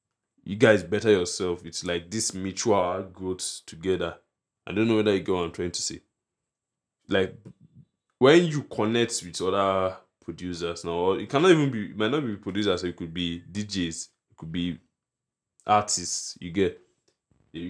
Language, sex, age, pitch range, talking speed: English, male, 20-39, 90-110 Hz, 165 wpm